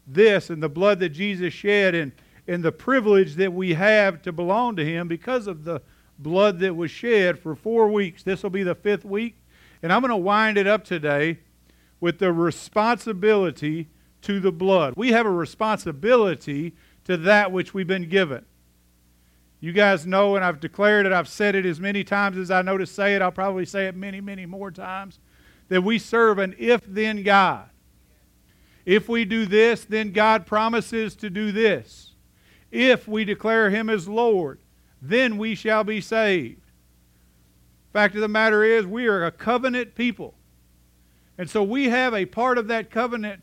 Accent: American